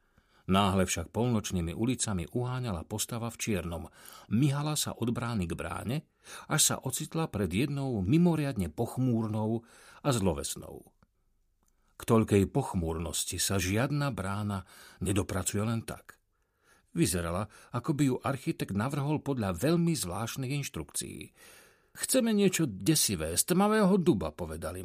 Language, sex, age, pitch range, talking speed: Slovak, male, 50-69, 100-165 Hz, 120 wpm